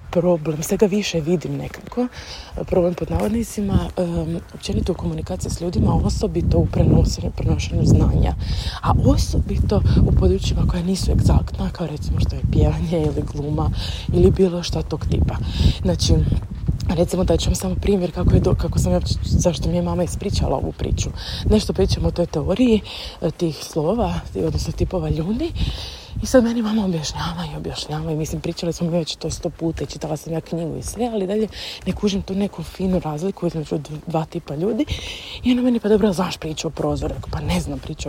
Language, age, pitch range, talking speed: Croatian, 20-39, 155-200 Hz, 185 wpm